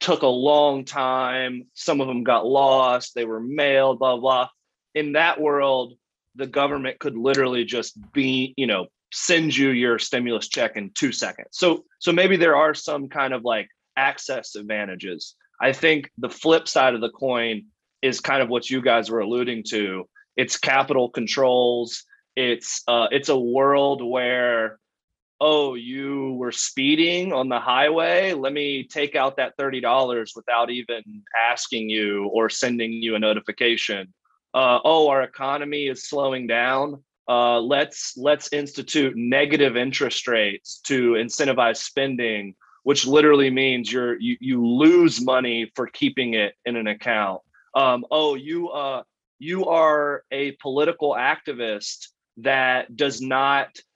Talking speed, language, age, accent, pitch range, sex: 150 wpm, English, 30-49, American, 120-145 Hz, male